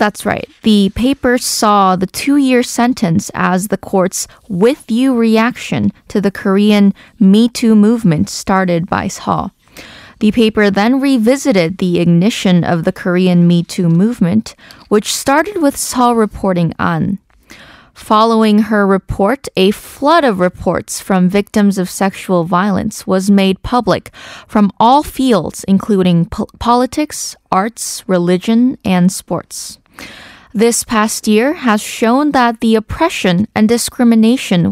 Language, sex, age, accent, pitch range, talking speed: English, female, 20-39, American, 195-240 Hz, 135 wpm